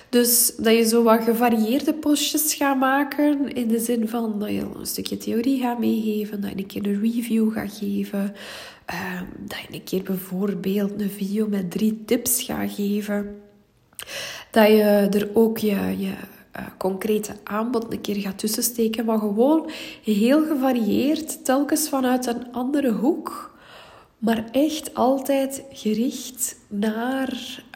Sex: female